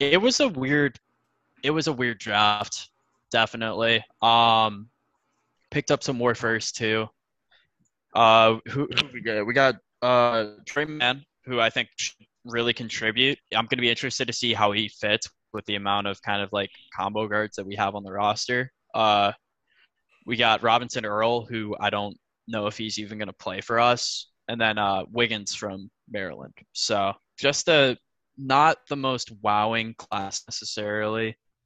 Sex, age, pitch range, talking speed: male, 10-29, 105-120 Hz, 165 wpm